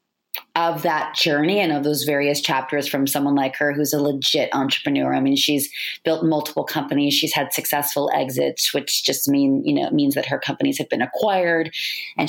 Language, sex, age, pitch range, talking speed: English, female, 30-49, 145-185 Hz, 195 wpm